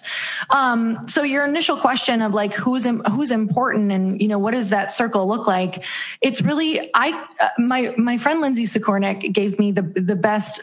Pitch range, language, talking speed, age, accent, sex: 195-240 Hz, English, 185 wpm, 20-39, American, female